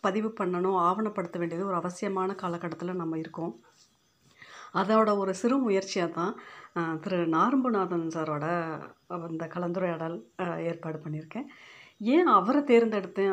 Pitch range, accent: 175-220 Hz, native